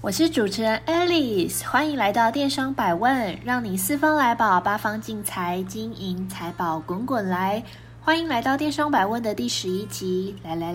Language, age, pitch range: Chinese, 20-39, 185-275 Hz